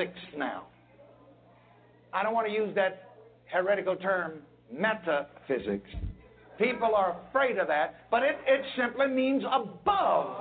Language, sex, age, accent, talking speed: English, male, 60-79, American, 120 wpm